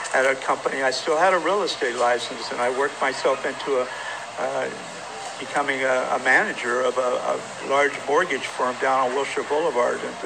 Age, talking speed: 60-79, 185 wpm